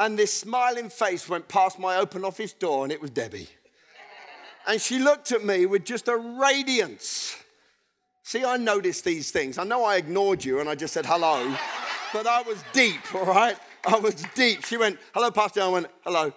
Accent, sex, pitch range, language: British, male, 195-260 Hz, English